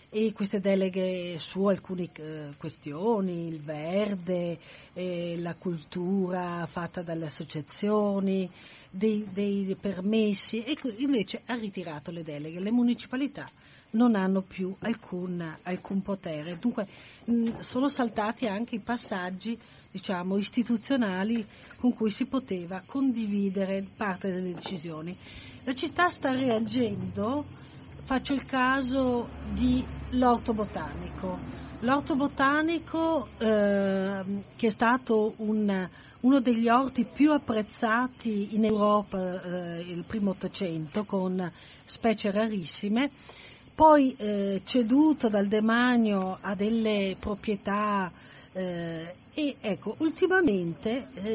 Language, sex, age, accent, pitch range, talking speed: Italian, female, 40-59, native, 185-240 Hz, 105 wpm